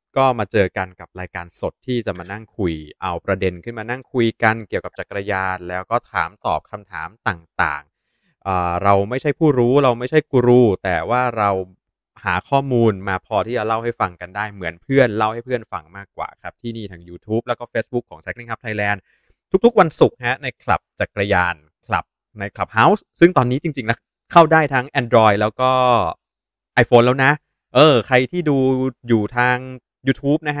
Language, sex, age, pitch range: Thai, male, 20-39, 105-135 Hz